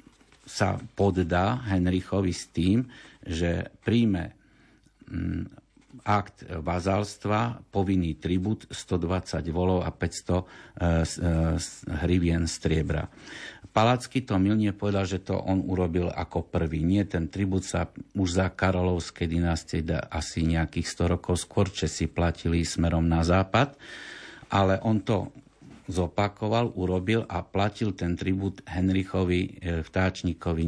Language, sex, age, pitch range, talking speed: Slovak, male, 50-69, 85-105 Hz, 115 wpm